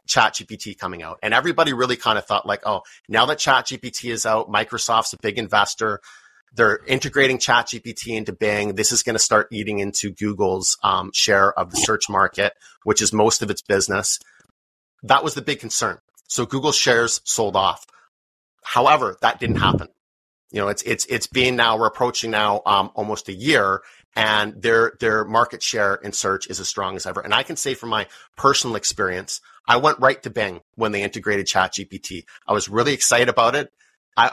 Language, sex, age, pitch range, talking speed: English, male, 30-49, 105-130 Hz, 190 wpm